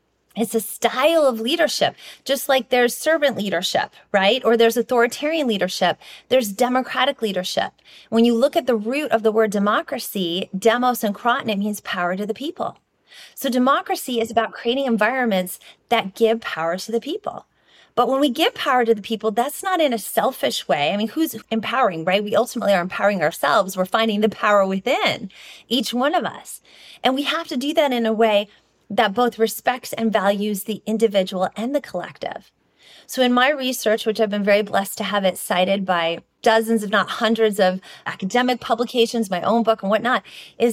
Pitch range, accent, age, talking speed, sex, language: 205-250 Hz, American, 30-49, 190 wpm, female, English